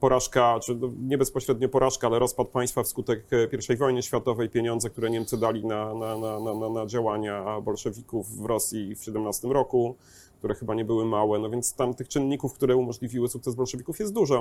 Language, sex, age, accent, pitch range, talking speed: Polish, male, 30-49, native, 120-150 Hz, 185 wpm